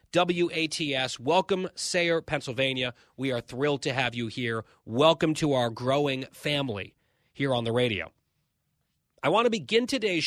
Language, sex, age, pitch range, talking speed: English, male, 30-49, 115-145 Hz, 145 wpm